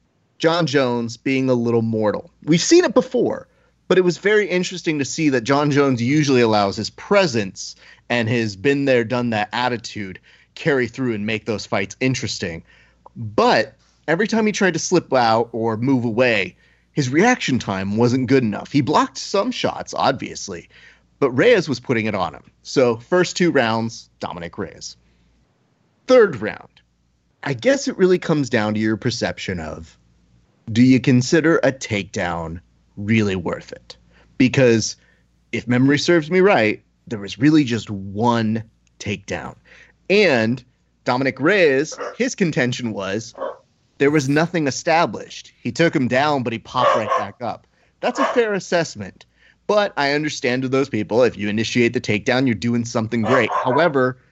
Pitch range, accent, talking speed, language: 110-155 Hz, American, 160 wpm, English